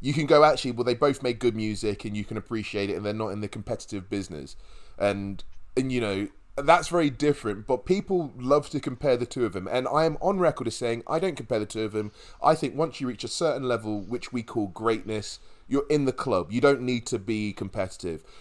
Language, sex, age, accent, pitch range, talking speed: English, male, 20-39, British, 105-140 Hz, 240 wpm